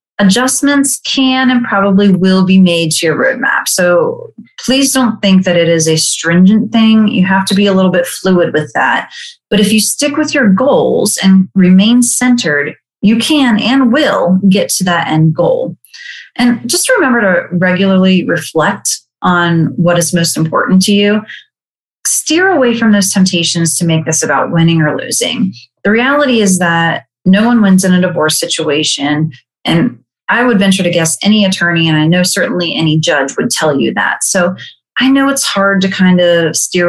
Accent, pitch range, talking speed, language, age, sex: American, 165-225 Hz, 180 wpm, English, 30-49, female